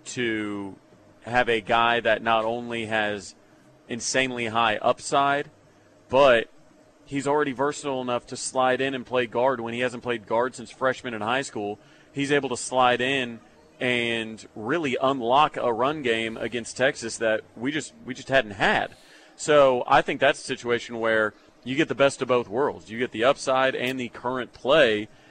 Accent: American